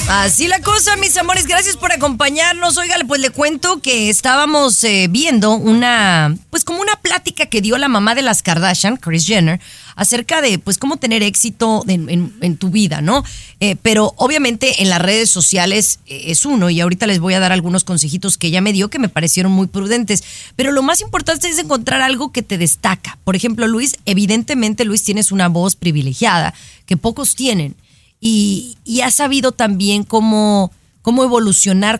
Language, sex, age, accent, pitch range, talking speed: Spanish, female, 30-49, Mexican, 185-260 Hz, 185 wpm